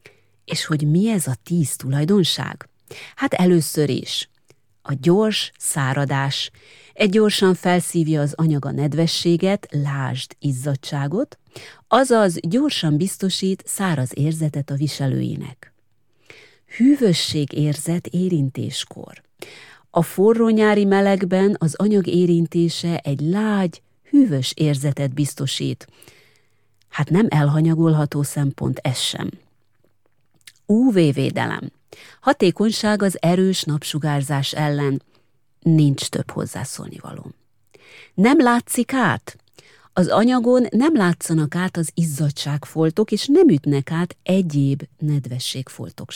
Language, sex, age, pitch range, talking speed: Hungarian, female, 30-49, 140-190 Hz, 95 wpm